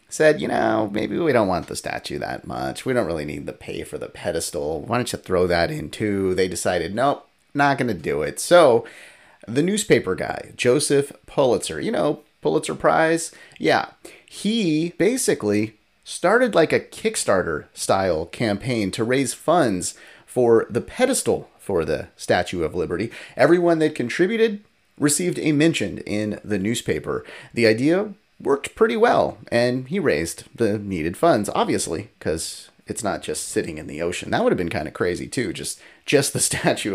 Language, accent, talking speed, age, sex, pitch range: English, American, 170 wpm, 30-49, male, 100-165 Hz